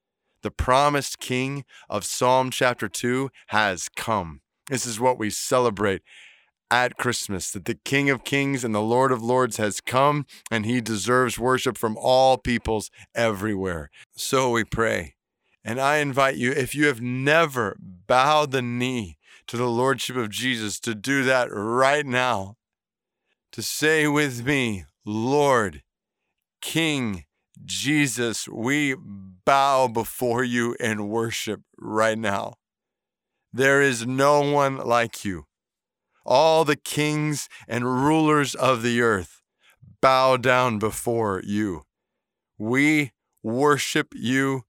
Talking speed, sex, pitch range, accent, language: 130 wpm, male, 115-140 Hz, American, English